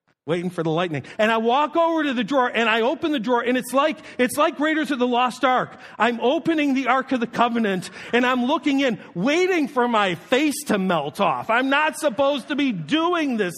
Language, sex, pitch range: English, male, 180-265 Hz